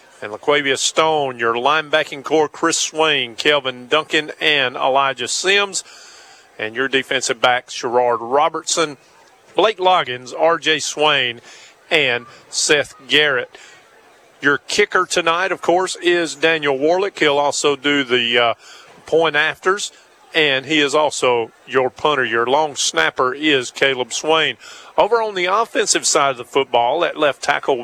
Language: English